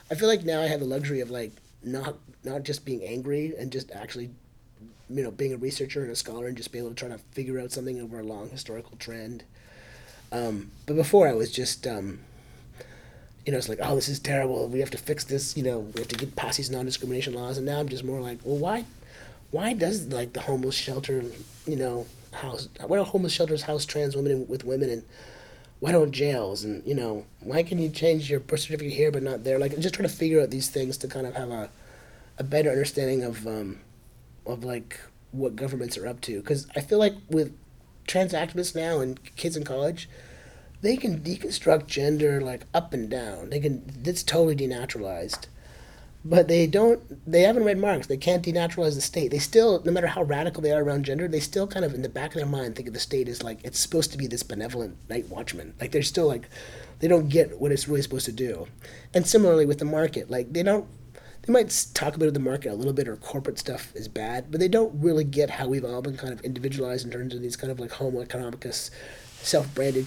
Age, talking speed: 30-49, 235 wpm